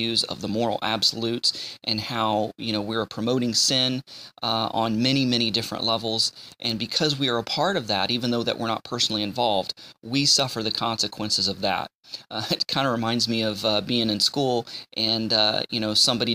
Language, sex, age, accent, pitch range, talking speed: English, male, 30-49, American, 110-125 Hz, 200 wpm